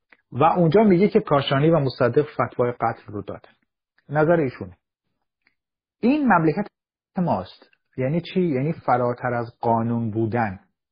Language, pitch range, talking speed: Persian, 115-160 Hz, 125 wpm